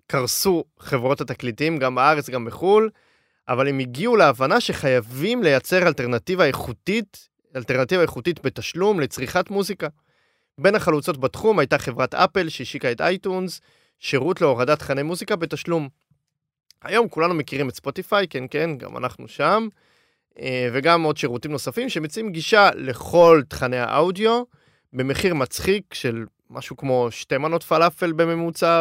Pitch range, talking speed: 135-185 Hz, 130 wpm